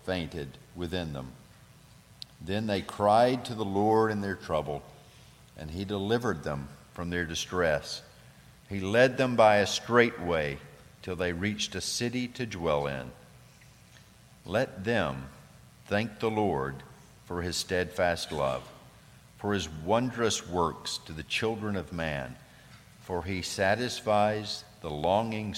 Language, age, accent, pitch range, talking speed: English, 50-69, American, 75-100 Hz, 135 wpm